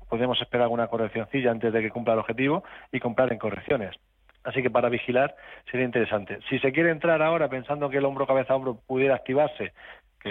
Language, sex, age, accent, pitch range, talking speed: Spanish, male, 40-59, Spanish, 110-135 Hz, 200 wpm